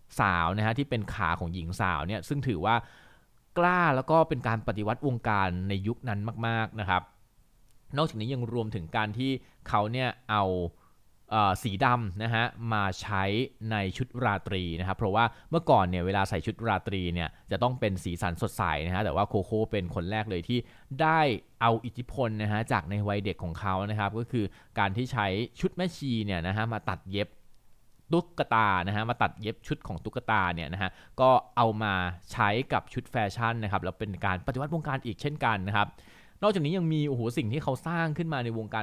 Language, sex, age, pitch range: Thai, male, 20-39, 100-130 Hz